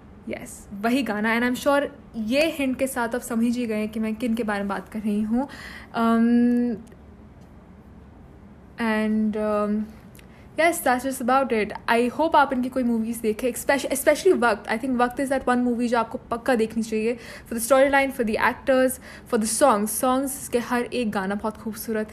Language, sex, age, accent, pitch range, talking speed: Hindi, female, 10-29, native, 215-250 Hz, 190 wpm